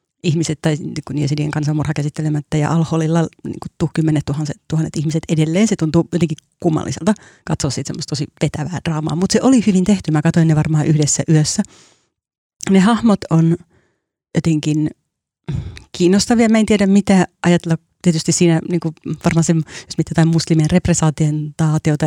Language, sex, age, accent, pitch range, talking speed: Finnish, female, 30-49, native, 150-175 Hz, 140 wpm